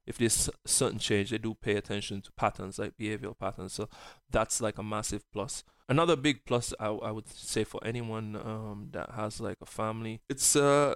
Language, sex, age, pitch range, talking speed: English, male, 20-39, 105-115 Hz, 210 wpm